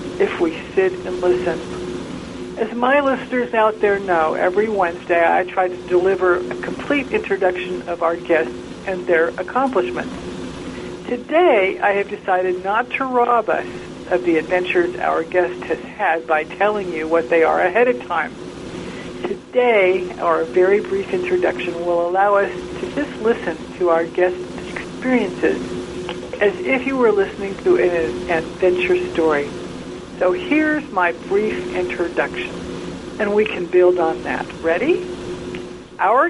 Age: 60-79